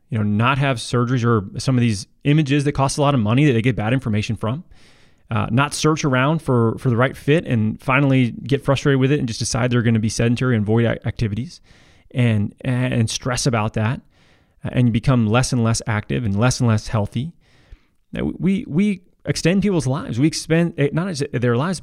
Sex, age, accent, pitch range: male, 20-39, American, 115-145 Hz